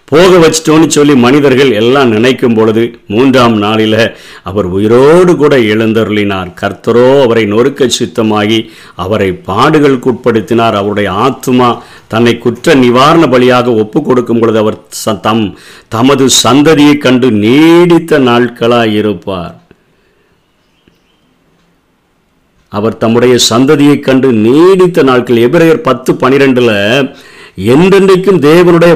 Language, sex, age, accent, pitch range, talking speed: Tamil, male, 50-69, native, 110-140 Hz, 90 wpm